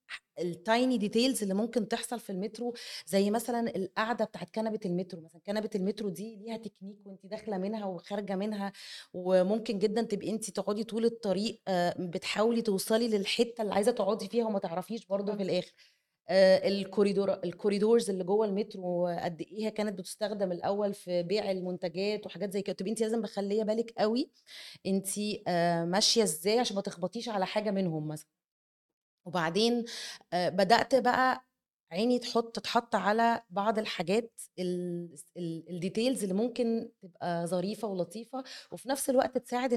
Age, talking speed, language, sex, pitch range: 30-49, 140 wpm, Arabic, female, 185-230 Hz